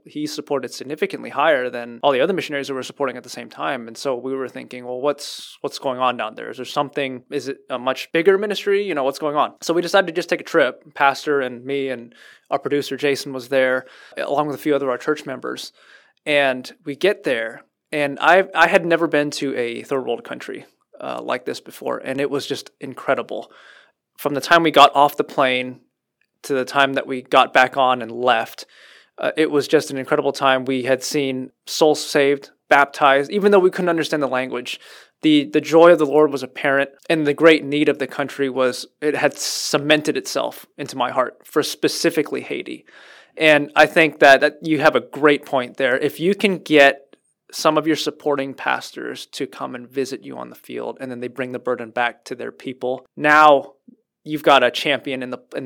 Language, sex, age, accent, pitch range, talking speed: English, male, 20-39, American, 130-155 Hz, 215 wpm